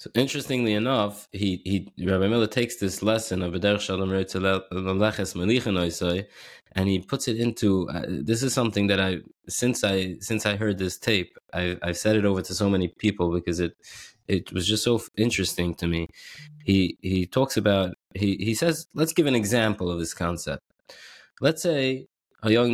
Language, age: English, 20-39